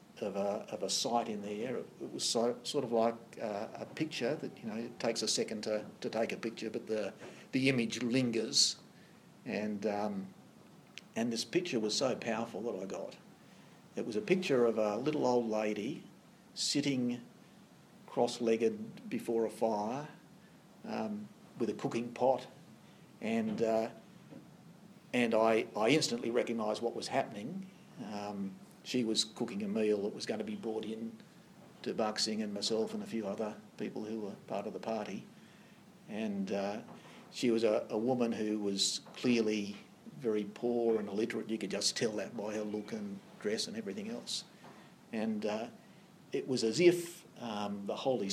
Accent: Australian